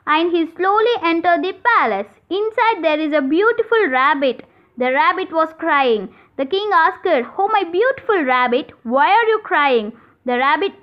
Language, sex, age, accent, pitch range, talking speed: Telugu, female, 20-39, native, 275-390 Hz, 170 wpm